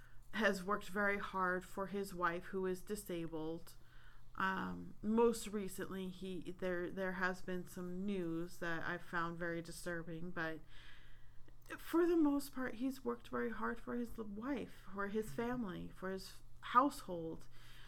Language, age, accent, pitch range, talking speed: English, 30-49, American, 170-215 Hz, 145 wpm